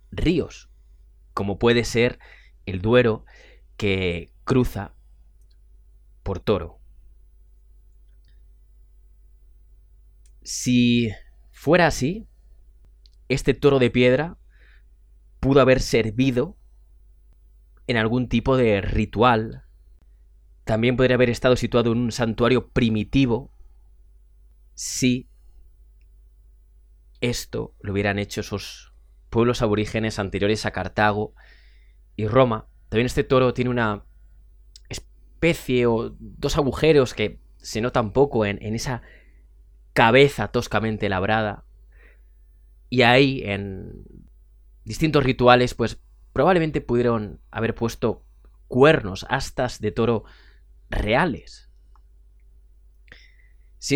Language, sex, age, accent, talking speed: Spanish, male, 30-49, Spanish, 90 wpm